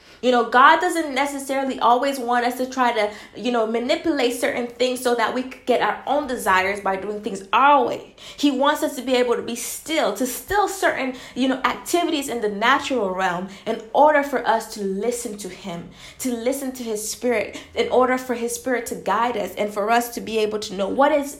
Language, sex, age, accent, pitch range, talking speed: English, female, 20-39, American, 210-260 Hz, 220 wpm